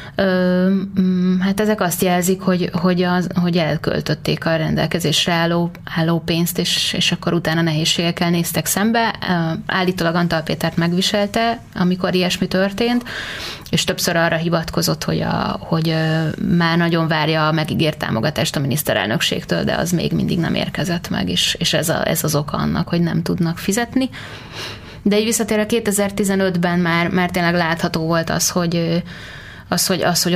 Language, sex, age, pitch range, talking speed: Hungarian, female, 20-39, 170-190 Hz, 150 wpm